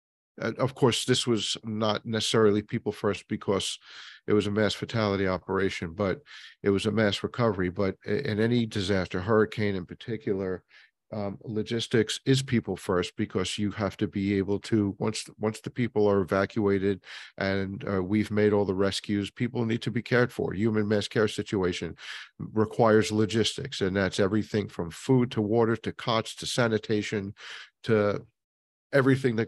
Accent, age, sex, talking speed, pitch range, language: American, 50-69, male, 160 wpm, 100-115 Hz, English